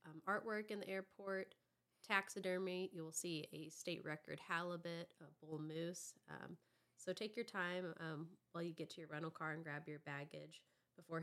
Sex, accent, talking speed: female, American, 180 wpm